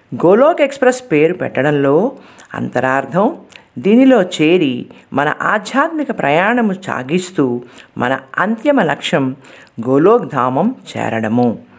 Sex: female